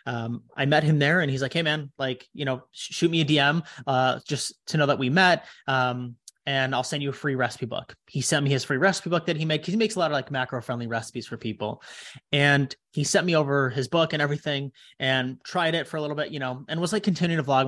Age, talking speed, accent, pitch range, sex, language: 30-49, 265 wpm, American, 125-150 Hz, male, English